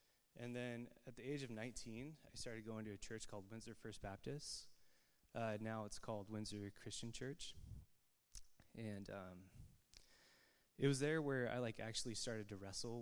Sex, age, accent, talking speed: male, 20-39, American, 165 wpm